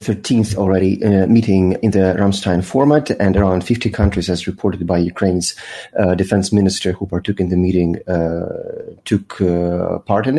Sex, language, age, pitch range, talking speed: male, English, 30-49, 95-110 Hz, 170 wpm